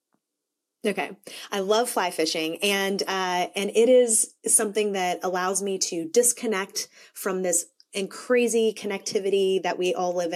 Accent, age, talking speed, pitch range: American, 20-39, 145 wpm, 185-230 Hz